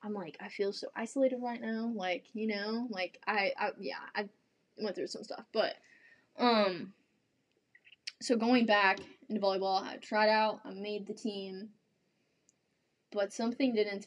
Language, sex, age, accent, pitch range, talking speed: English, female, 10-29, American, 195-240 Hz, 160 wpm